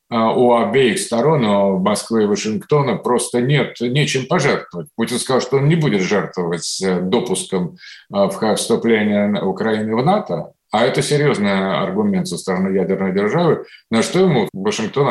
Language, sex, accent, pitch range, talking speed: Russian, male, native, 115-185 Hz, 140 wpm